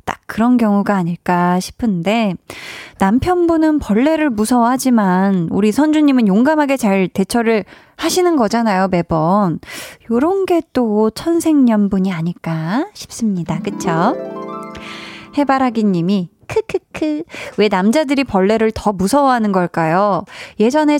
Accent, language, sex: native, Korean, female